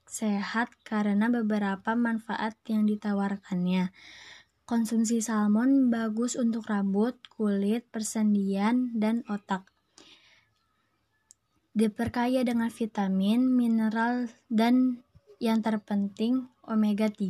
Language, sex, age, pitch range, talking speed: Indonesian, female, 20-39, 210-235 Hz, 80 wpm